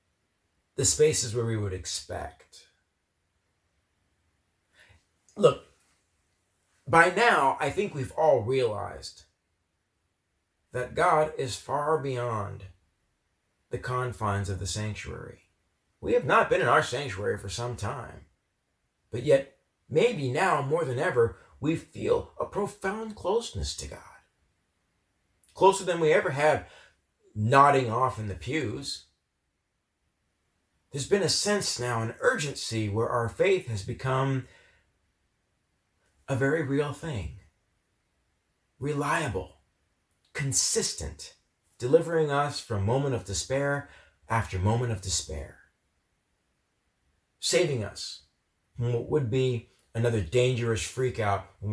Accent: American